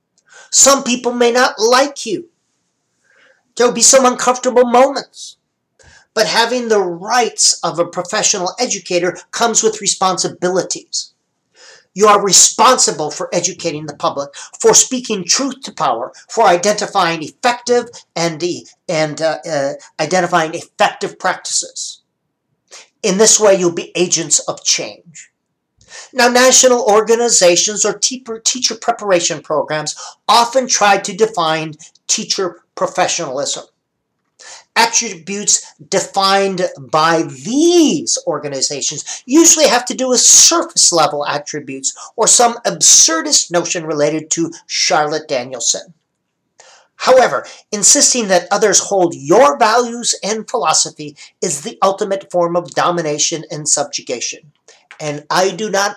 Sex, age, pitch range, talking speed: male, 50-69, 170-245 Hz, 115 wpm